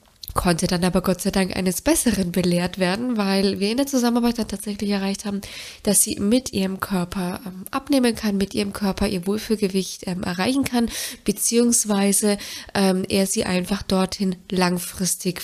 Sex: female